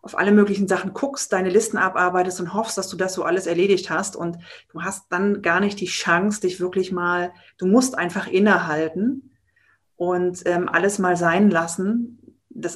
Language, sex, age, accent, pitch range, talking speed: German, female, 30-49, German, 170-195 Hz, 185 wpm